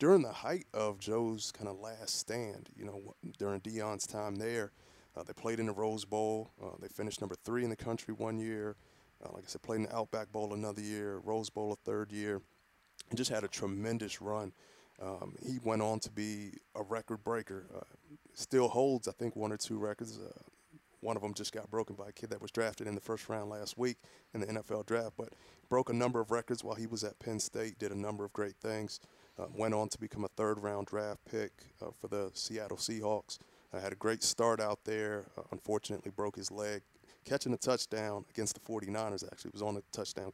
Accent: American